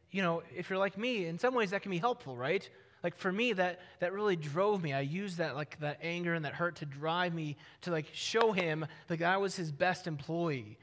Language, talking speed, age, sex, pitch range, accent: English, 245 wpm, 20-39, male, 120-175 Hz, American